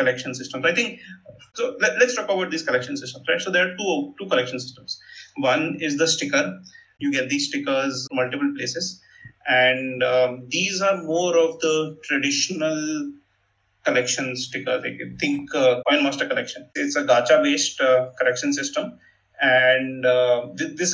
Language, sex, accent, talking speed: English, male, Indian, 165 wpm